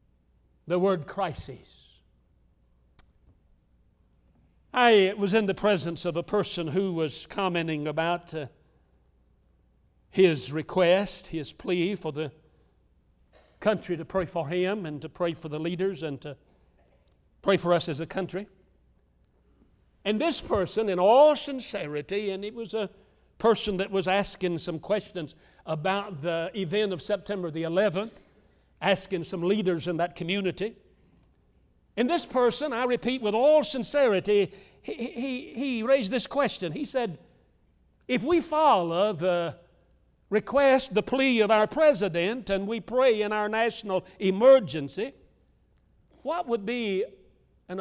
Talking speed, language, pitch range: 135 wpm, English, 160-215 Hz